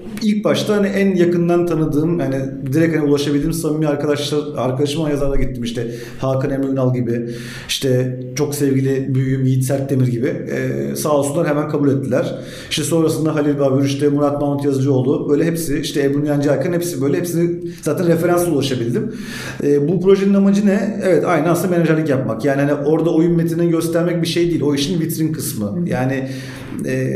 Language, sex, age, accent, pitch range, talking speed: Turkish, male, 40-59, native, 135-170 Hz, 170 wpm